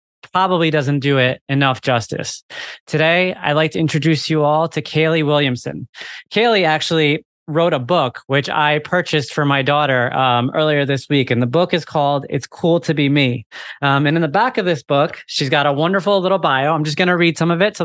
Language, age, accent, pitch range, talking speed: English, 20-39, American, 140-165 Hz, 215 wpm